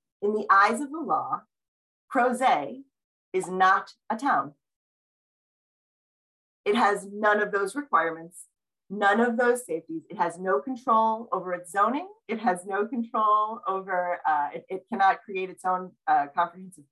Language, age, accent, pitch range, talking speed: English, 30-49, American, 175-245 Hz, 150 wpm